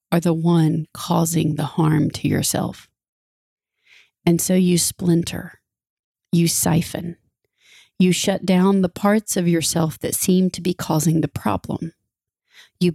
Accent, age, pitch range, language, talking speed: American, 30-49, 160-180 Hz, English, 130 wpm